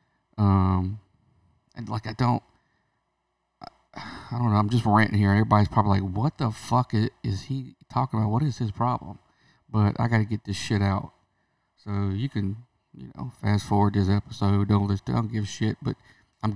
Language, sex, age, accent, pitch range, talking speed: English, male, 50-69, American, 100-120 Hz, 180 wpm